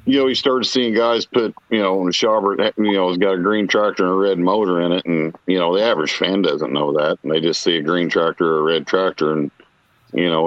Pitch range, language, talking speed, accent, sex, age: 85-140 Hz, English, 275 wpm, American, male, 50-69